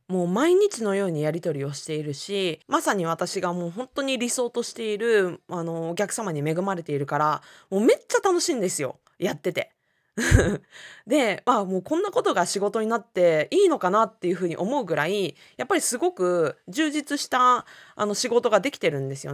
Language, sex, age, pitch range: Japanese, female, 20-39, 175-290 Hz